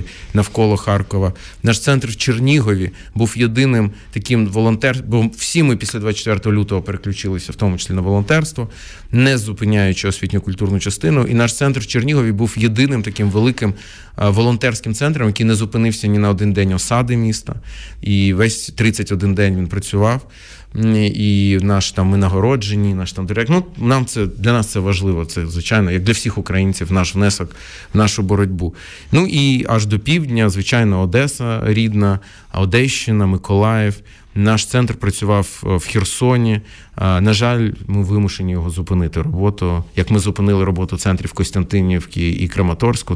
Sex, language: male, Ukrainian